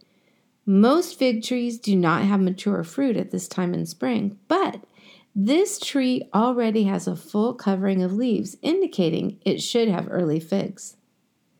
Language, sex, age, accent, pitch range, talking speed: English, female, 50-69, American, 195-255 Hz, 150 wpm